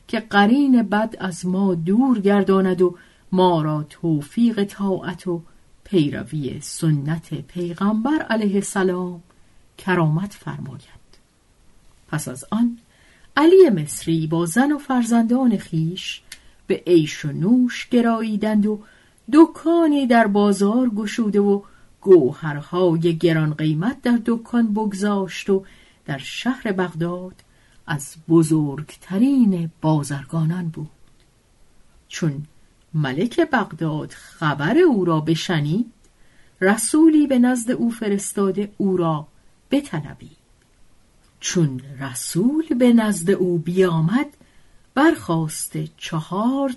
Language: Persian